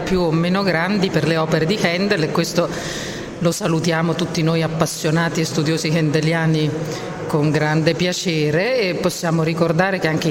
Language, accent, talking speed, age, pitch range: Italian, native, 155 wpm, 40-59, 155-175 Hz